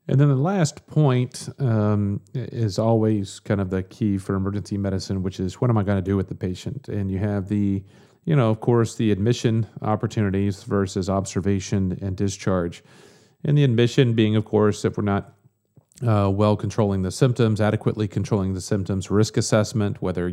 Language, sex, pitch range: English, male, 95-115 Hz